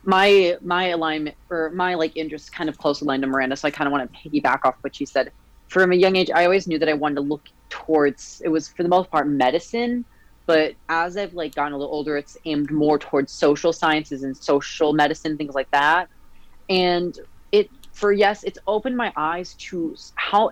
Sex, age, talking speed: female, 30-49, 215 wpm